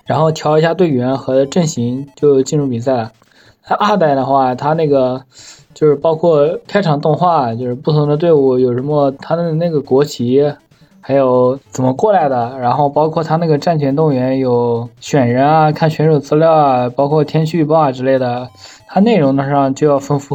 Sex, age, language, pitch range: male, 20-39, Chinese, 130-160 Hz